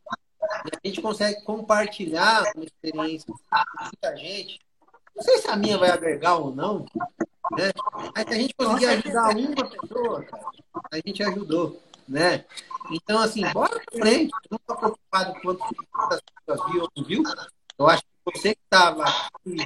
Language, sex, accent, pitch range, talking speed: Portuguese, male, Brazilian, 155-215 Hz, 165 wpm